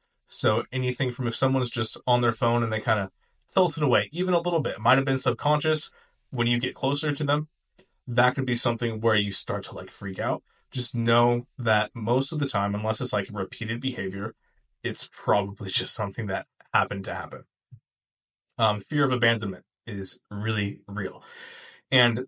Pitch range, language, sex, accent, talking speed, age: 105-130 Hz, English, male, American, 185 wpm, 20-39